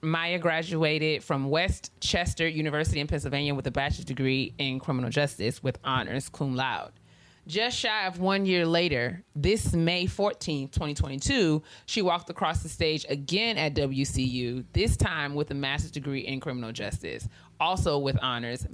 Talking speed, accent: 155 wpm, American